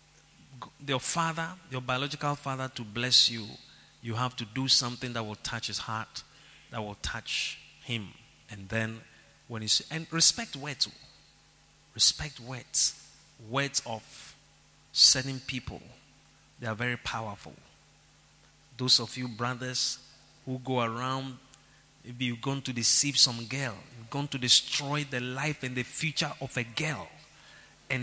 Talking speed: 140 wpm